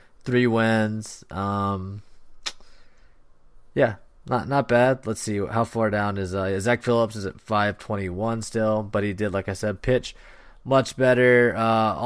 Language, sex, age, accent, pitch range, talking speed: English, male, 20-39, American, 105-125 Hz, 150 wpm